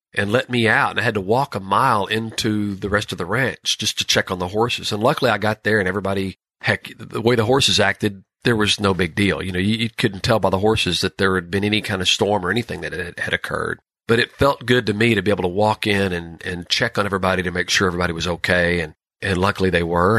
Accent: American